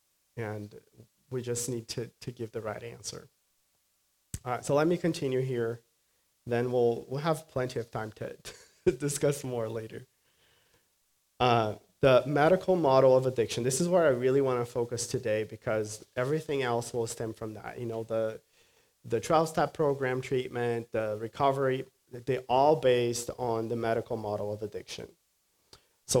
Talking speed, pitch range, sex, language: 160 wpm, 115-135 Hz, male, English